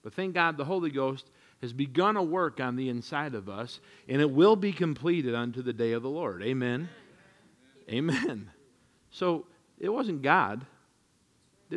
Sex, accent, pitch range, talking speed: male, American, 125-175 Hz, 170 wpm